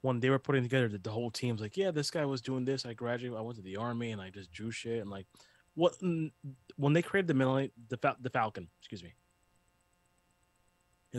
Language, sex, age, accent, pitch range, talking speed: English, male, 20-39, American, 90-130 Hz, 225 wpm